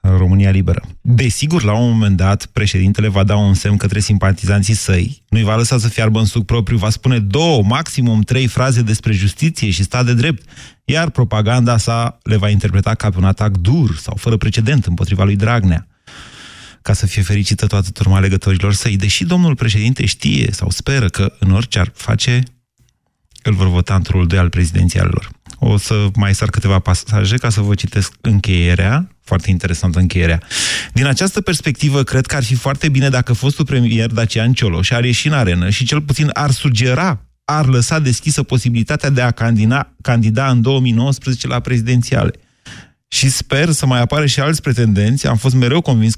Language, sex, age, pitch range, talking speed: Romanian, male, 30-49, 100-130 Hz, 180 wpm